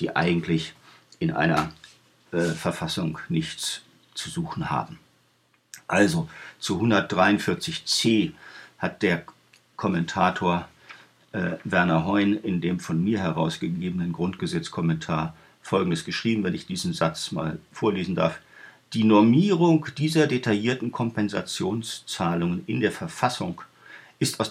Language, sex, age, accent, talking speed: German, male, 50-69, German, 110 wpm